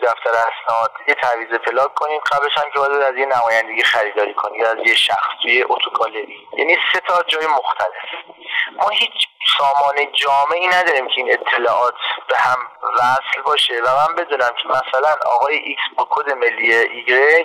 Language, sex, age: Persian, male, 30-49